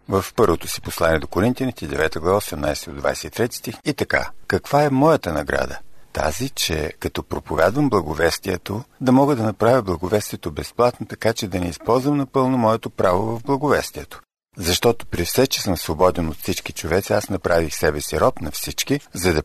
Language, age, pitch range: Bulgarian, 50-69, 85-115 Hz